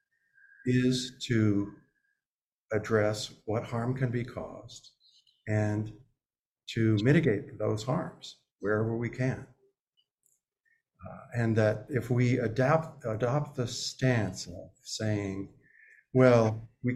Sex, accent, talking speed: male, American, 105 wpm